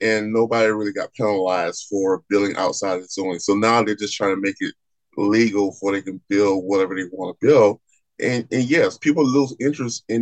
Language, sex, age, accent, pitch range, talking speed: English, male, 20-39, American, 100-120 Hz, 210 wpm